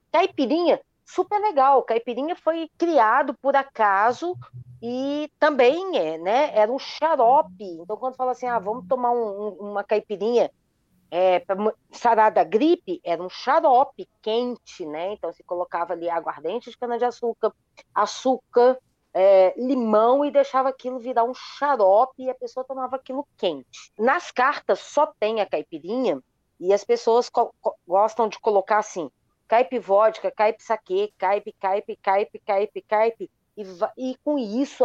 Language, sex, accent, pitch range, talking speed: Portuguese, female, Brazilian, 195-260 Hz, 145 wpm